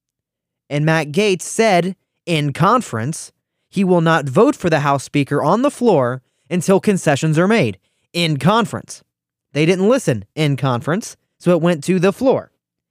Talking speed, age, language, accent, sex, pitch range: 160 wpm, 20-39, English, American, male, 130-180 Hz